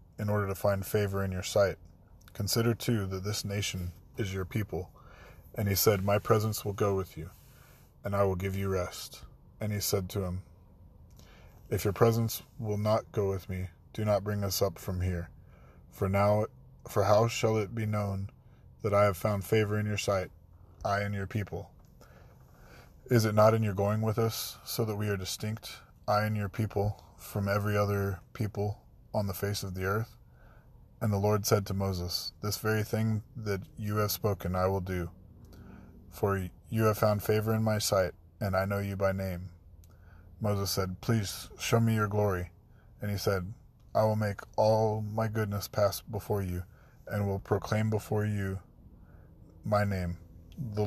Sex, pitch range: male, 95-110 Hz